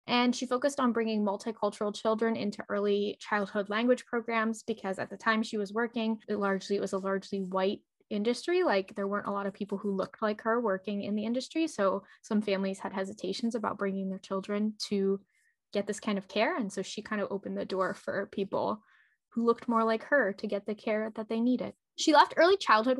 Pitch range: 205-250 Hz